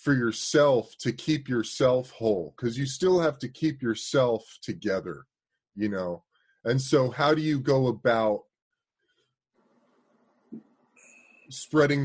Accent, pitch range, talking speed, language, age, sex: American, 115-160 Hz, 120 wpm, English, 30-49, male